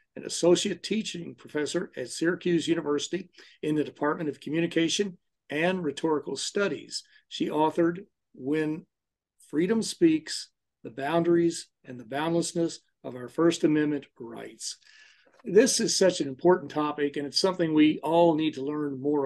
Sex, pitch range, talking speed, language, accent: male, 145-175 Hz, 140 wpm, English, American